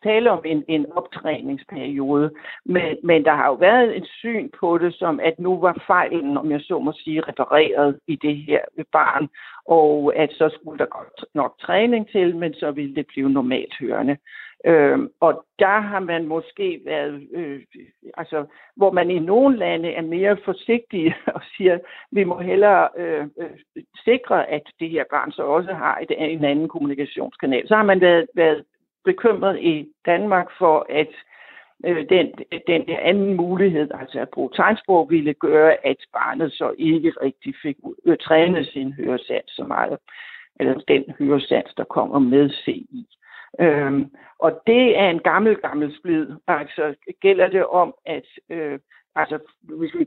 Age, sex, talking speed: 60-79, male, 170 wpm